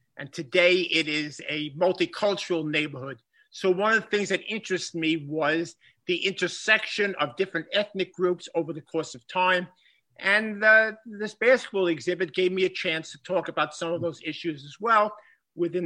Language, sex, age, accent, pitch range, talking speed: English, male, 50-69, American, 160-185 Hz, 175 wpm